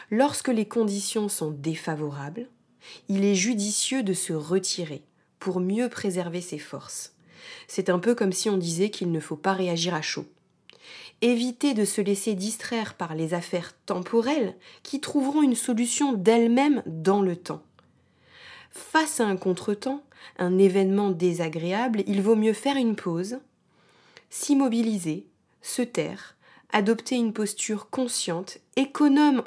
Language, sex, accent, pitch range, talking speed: French, female, French, 180-235 Hz, 140 wpm